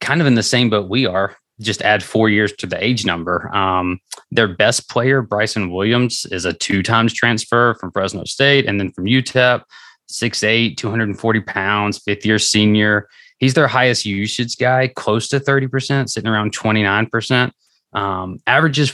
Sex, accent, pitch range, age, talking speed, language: male, American, 100-125 Hz, 20-39, 160 wpm, English